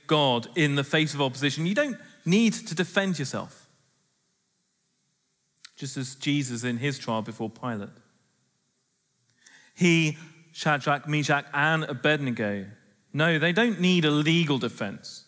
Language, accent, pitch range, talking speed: English, British, 135-180 Hz, 125 wpm